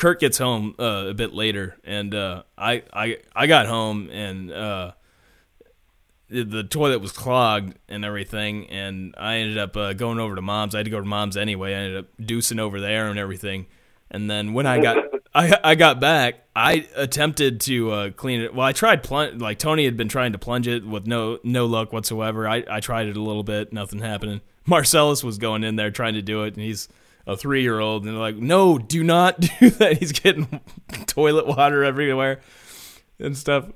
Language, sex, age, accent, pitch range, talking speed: English, male, 20-39, American, 105-135 Hz, 205 wpm